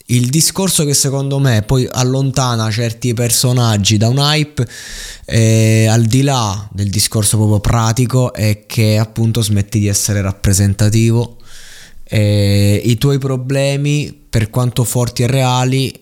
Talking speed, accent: 135 wpm, native